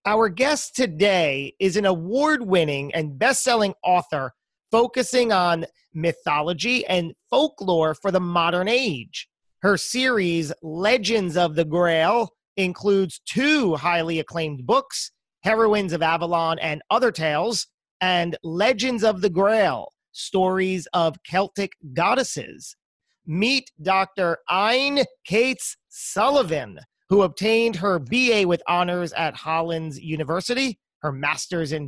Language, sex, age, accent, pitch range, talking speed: English, male, 40-59, American, 160-220 Hz, 115 wpm